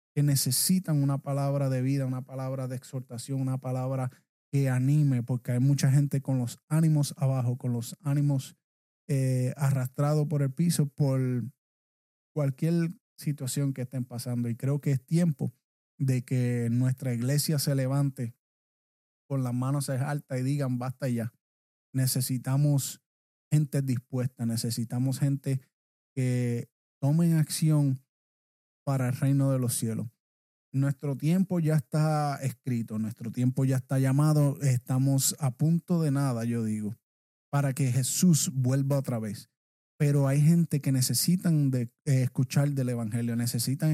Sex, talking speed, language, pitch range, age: male, 140 wpm, Spanish, 125-145 Hz, 20-39